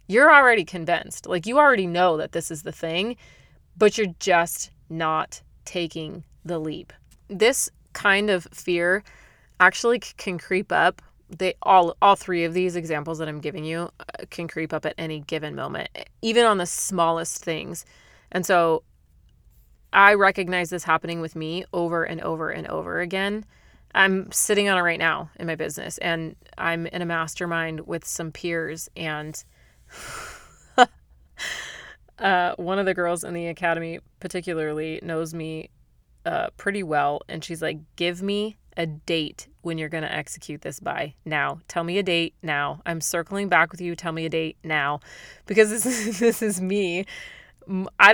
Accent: American